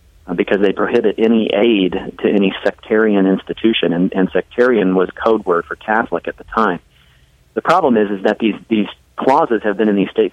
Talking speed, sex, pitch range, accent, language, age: 190 wpm, male, 90-105 Hz, American, English, 40-59